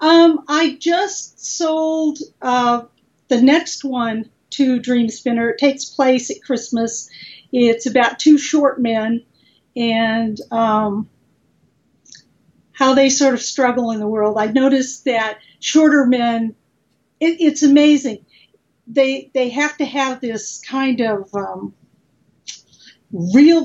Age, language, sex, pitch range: 50-69, English, female, 220-275 Hz